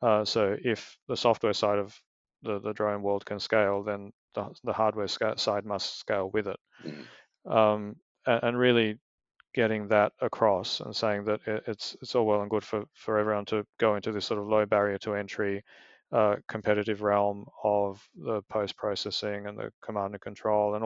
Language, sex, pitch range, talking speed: English, male, 105-110 Hz, 185 wpm